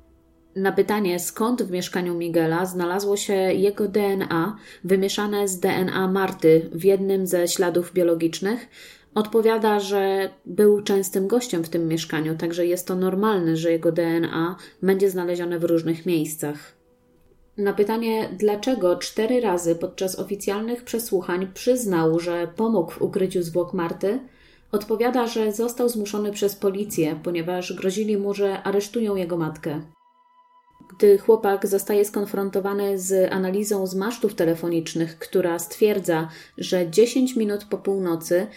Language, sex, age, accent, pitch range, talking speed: Polish, female, 20-39, native, 170-210 Hz, 130 wpm